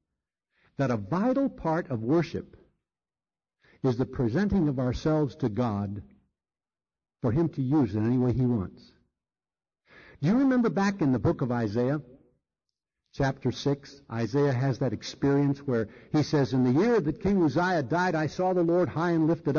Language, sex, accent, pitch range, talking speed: English, male, American, 125-185 Hz, 165 wpm